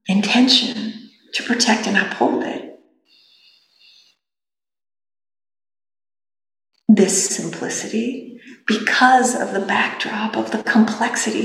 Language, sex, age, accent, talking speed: English, female, 50-69, American, 80 wpm